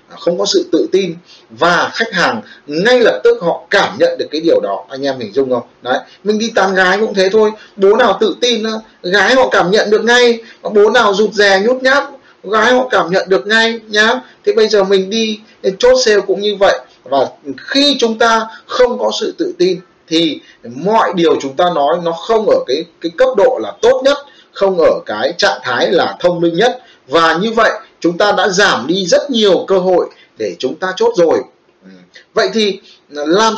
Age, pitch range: 20-39, 185-260 Hz